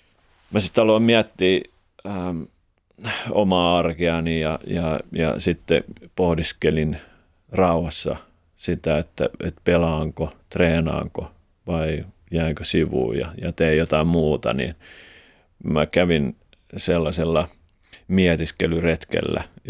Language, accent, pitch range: Finnish, native, 80-90 Hz